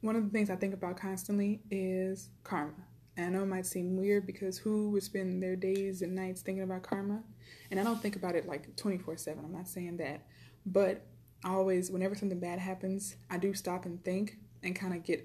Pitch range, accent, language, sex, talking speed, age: 165-195 Hz, American, English, female, 220 wpm, 20-39